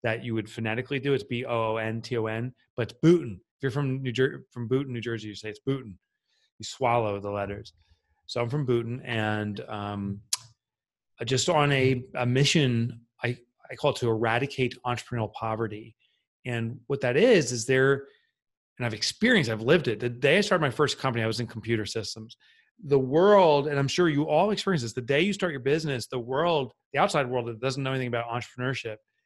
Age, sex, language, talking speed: 30-49, male, English, 195 wpm